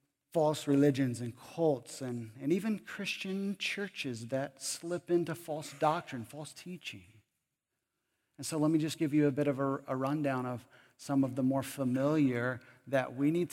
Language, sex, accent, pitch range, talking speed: English, male, American, 145-205 Hz, 170 wpm